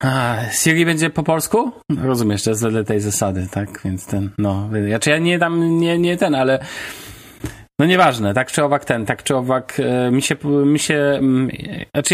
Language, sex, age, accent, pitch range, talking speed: Polish, male, 30-49, native, 110-135 Hz, 195 wpm